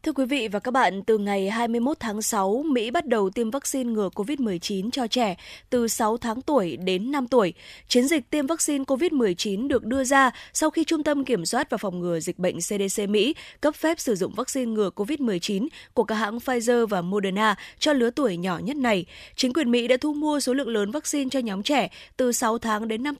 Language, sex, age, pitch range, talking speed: Vietnamese, female, 20-39, 205-265 Hz, 220 wpm